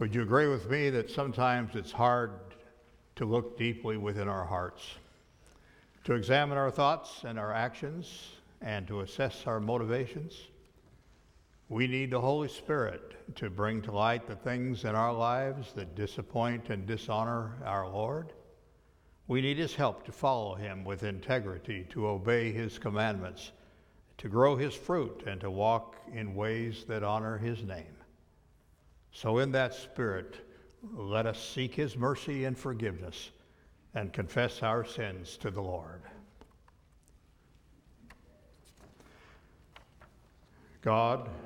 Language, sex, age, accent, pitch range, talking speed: English, male, 60-79, American, 100-120 Hz, 135 wpm